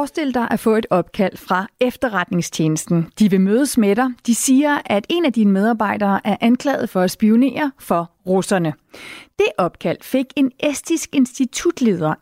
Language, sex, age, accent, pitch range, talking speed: Danish, female, 30-49, native, 200-270 Hz, 160 wpm